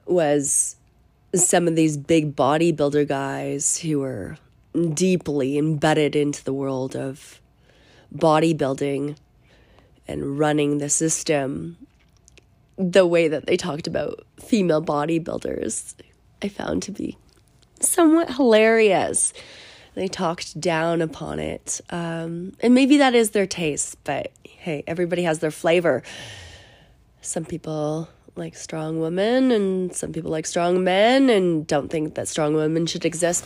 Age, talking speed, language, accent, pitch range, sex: 20-39, 125 wpm, English, American, 145-190 Hz, female